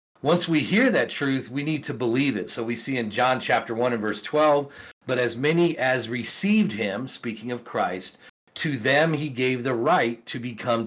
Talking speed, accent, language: 205 wpm, American, English